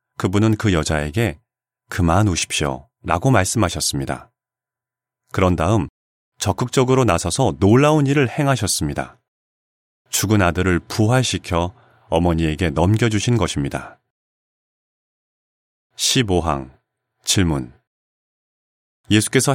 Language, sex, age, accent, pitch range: Korean, male, 30-49, native, 90-125 Hz